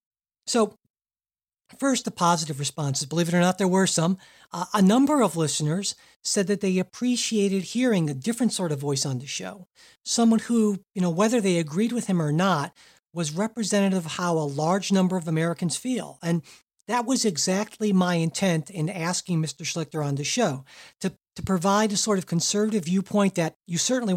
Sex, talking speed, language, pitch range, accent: male, 185 wpm, English, 170-210 Hz, American